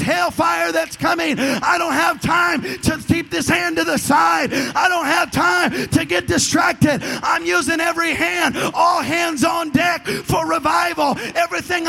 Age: 30-49